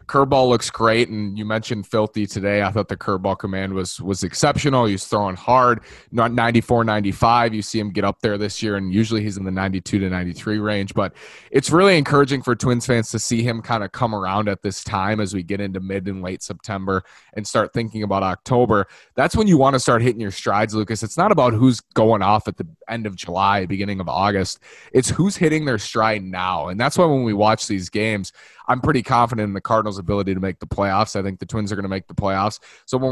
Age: 20-39